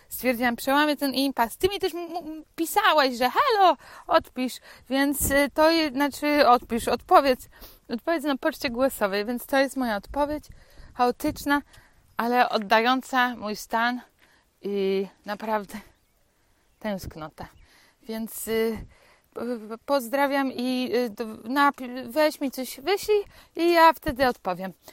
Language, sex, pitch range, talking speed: Polish, female, 215-275 Hz, 125 wpm